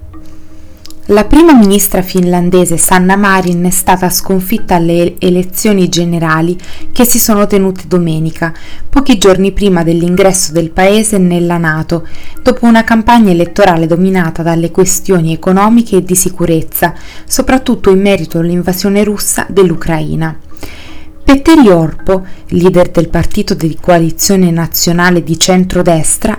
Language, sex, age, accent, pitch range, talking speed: Italian, female, 30-49, native, 170-205 Hz, 120 wpm